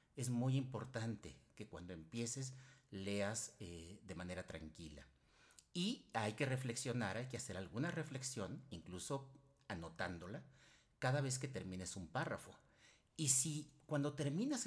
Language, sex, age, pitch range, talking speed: Spanish, male, 50-69, 95-140 Hz, 130 wpm